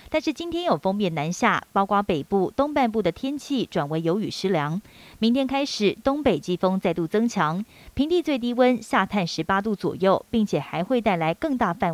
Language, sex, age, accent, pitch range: Chinese, female, 30-49, native, 185-245 Hz